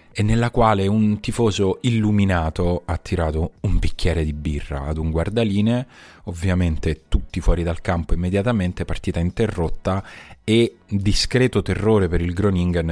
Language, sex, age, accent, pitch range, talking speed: Italian, male, 30-49, native, 85-105 Hz, 135 wpm